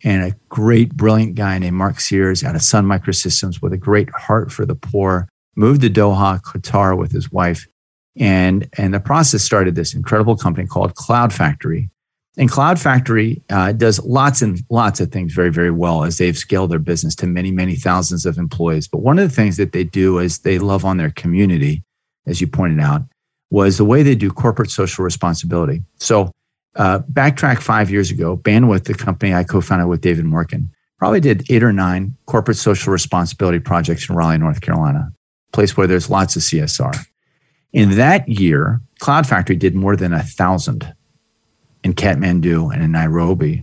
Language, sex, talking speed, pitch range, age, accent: English, male, 185 wpm, 90-120 Hz, 40-59, American